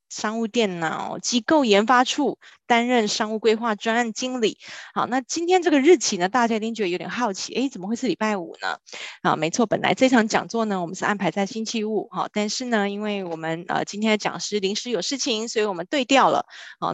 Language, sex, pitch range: Chinese, female, 190-235 Hz